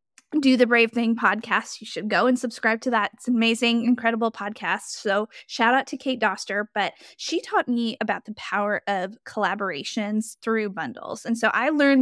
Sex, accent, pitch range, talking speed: female, American, 215-250 Hz, 185 wpm